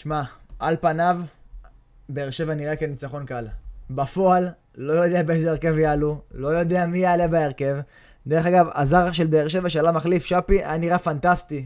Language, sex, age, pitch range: Hebrew, male, 20-39, 145-175 Hz